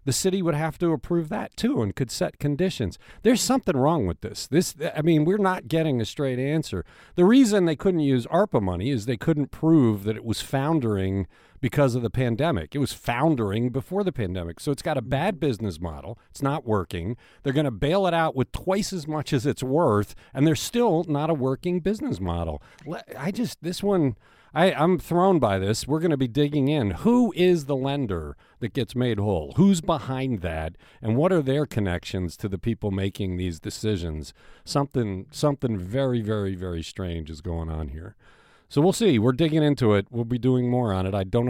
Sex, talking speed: male, 210 wpm